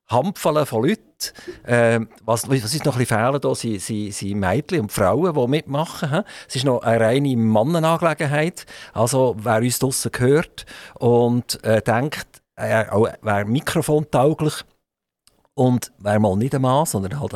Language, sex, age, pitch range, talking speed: German, male, 50-69, 105-145 Hz, 140 wpm